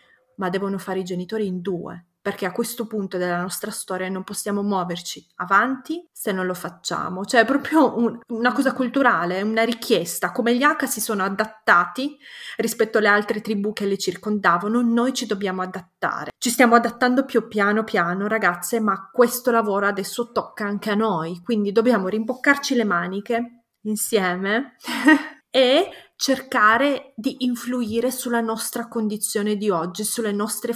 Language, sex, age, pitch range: Italian, female, 20-39, 190-230 Hz